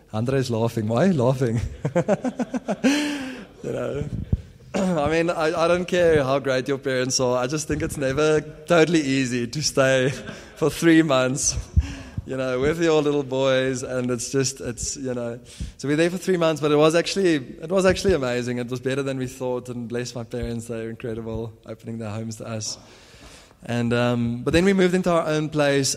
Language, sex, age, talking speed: English, male, 20-39, 195 wpm